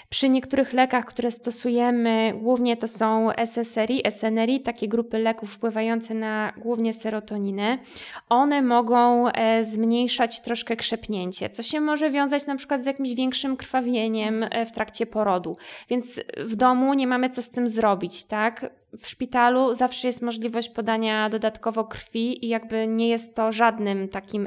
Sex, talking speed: female, 145 wpm